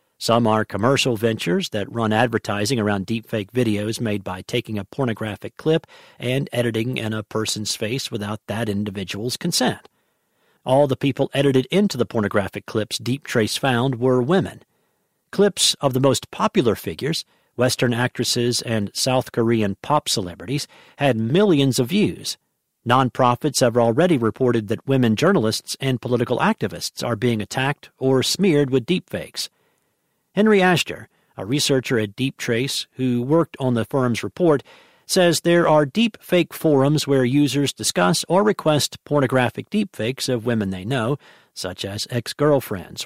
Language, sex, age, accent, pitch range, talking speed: English, male, 50-69, American, 110-140 Hz, 145 wpm